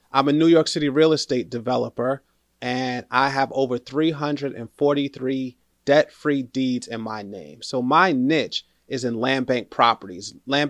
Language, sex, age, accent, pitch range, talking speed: English, male, 30-49, American, 125-150 Hz, 150 wpm